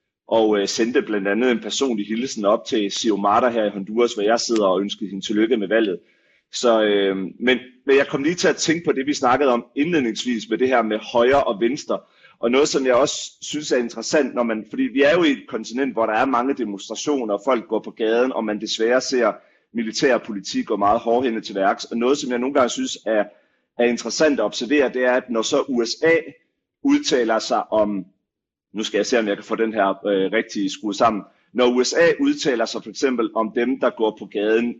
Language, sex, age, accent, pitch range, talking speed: Danish, male, 30-49, native, 105-135 Hz, 220 wpm